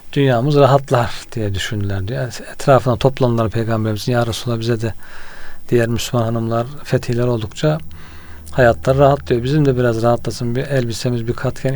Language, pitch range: Turkish, 115-140 Hz